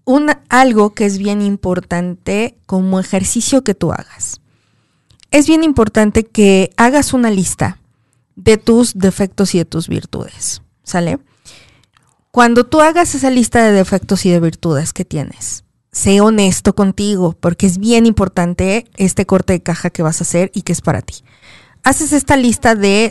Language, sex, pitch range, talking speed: Spanish, female, 175-230 Hz, 160 wpm